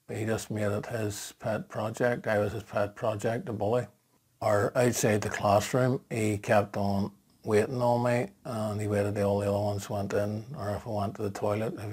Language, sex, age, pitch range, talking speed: English, male, 50-69, 105-120 Hz, 210 wpm